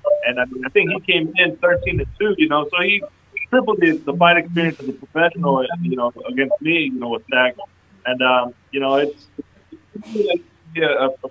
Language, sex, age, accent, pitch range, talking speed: English, male, 20-39, American, 140-195 Hz, 205 wpm